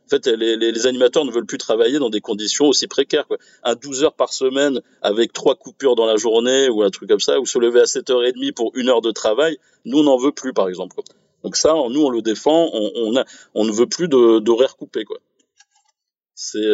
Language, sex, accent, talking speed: French, male, French, 235 wpm